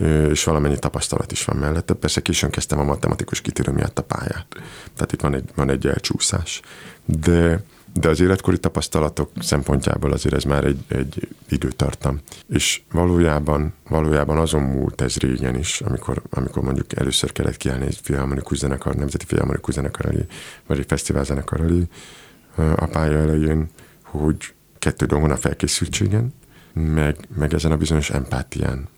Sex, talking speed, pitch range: male, 140 wpm, 70-80 Hz